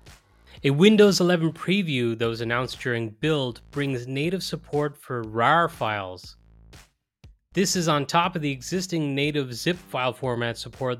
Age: 20-39